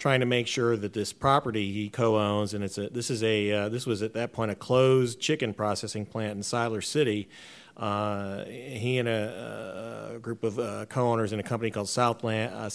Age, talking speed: 40-59, 210 wpm